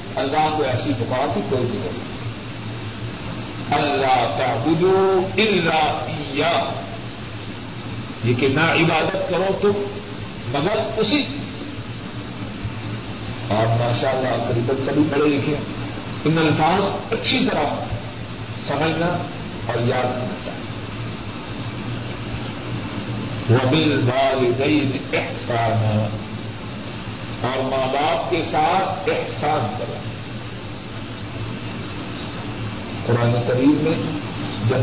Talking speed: 80 wpm